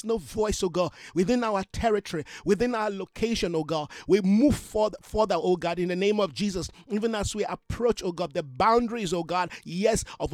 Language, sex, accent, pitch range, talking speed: English, male, Nigerian, 175-220 Hz, 195 wpm